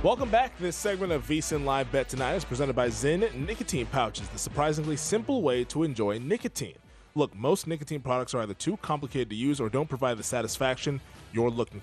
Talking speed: 205 wpm